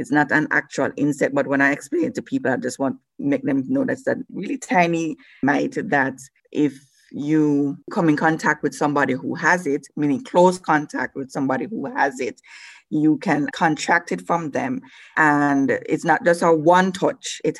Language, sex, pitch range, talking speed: English, female, 140-170 Hz, 200 wpm